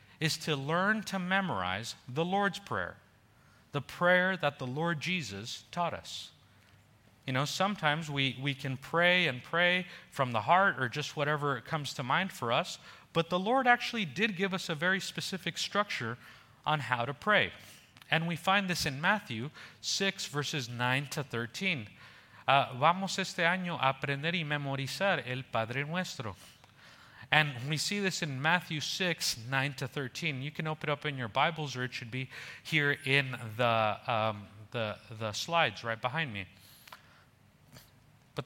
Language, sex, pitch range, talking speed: English, male, 125-175 Hz, 165 wpm